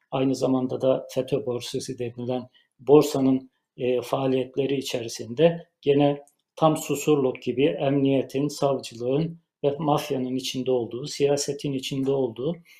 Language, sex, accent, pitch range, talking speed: Turkish, male, native, 130-155 Hz, 110 wpm